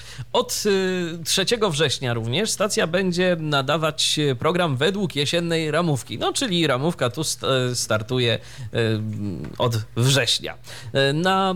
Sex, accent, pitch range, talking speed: male, native, 120-160 Hz, 100 wpm